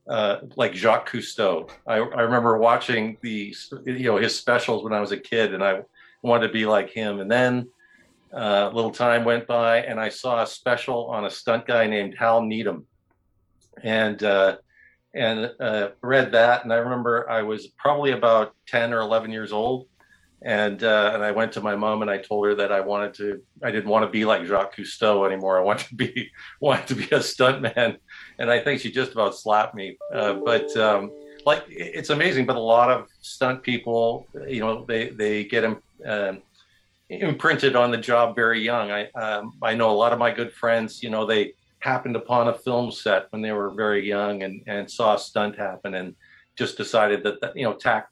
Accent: American